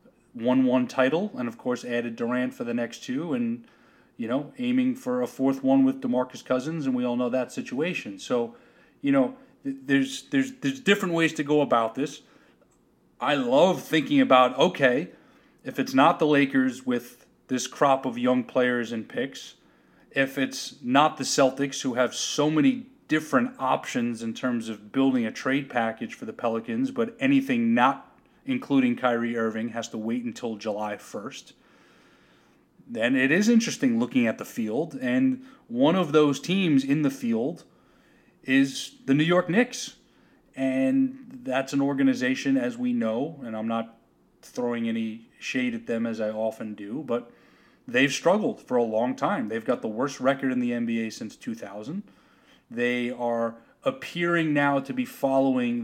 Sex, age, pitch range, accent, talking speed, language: male, 30-49, 120-185 Hz, American, 170 wpm, English